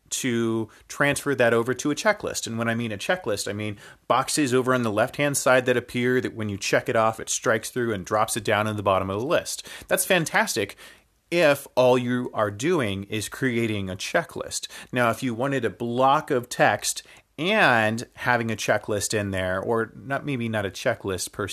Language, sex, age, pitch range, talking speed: English, male, 30-49, 110-135 Hz, 205 wpm